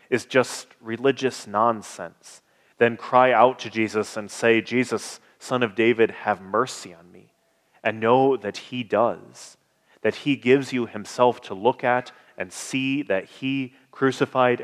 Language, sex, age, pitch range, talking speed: English, male, 30-49, 110-130 Hz, 150 wpm